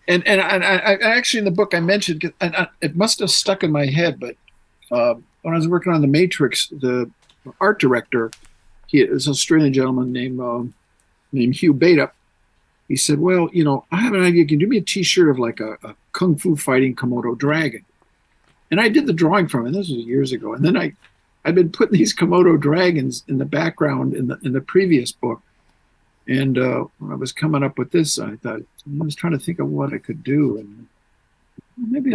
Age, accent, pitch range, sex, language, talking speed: 50-69, American, 130-180 Hz, male, English, 220 wpm